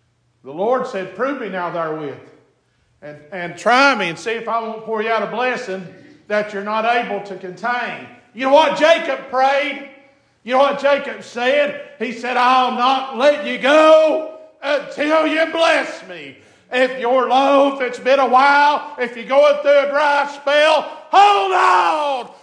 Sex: male